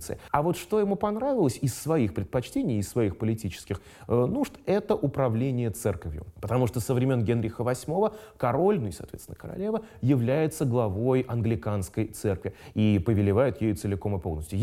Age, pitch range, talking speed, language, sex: 30-49, 105-150 Hz, 150 wpm, Russian, male